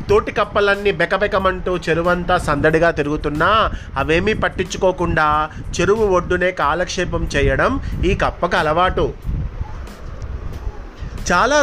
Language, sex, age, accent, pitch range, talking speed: Telugu, male, 30-49, native, 145-190 Hz, 85 wpm